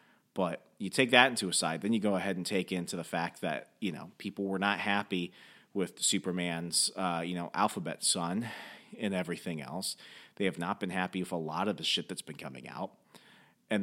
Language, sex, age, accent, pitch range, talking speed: English, male, 30-49, American, 85-115 Hz, 215 wpm